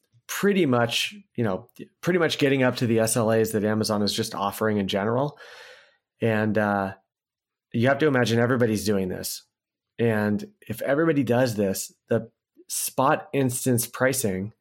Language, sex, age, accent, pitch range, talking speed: English, male, 30-49, American, 105-120 Hz, 160 wpm